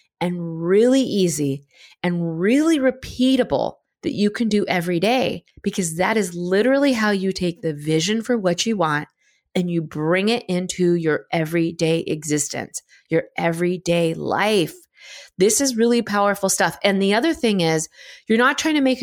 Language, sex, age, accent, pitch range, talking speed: English, female, 20-39, American, 170-225 Hz, 160 wpm